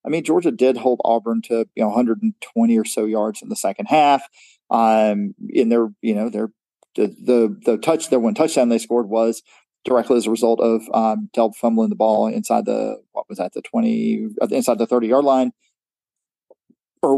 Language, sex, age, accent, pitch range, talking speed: English, male, 40-59, American, 110-140 Hz, 195 wpm